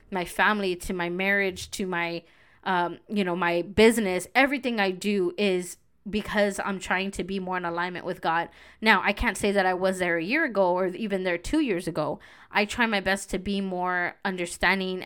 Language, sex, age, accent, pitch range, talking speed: English, female, 20-39, American, 180-210 Hz, 205 wpm